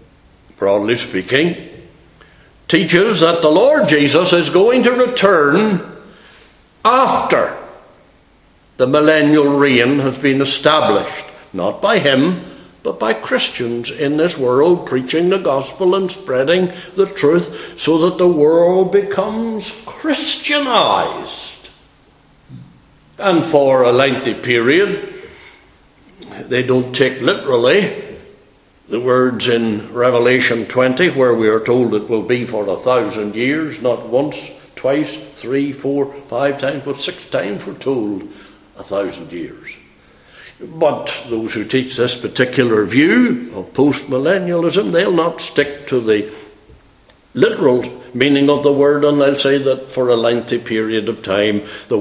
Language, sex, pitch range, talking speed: English, male, 125-180 Hz, 125 wpm